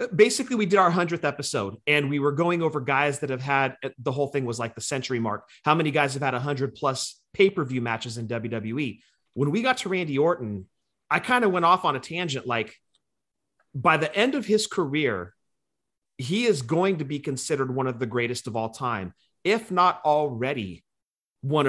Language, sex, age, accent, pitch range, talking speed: English, male, 30-49, American, 130-185 Hz, 200 wpm